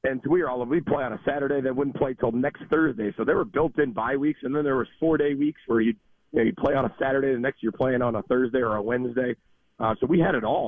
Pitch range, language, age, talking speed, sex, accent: 105-125 Hz, English, 40-59, 290 wpm, male, American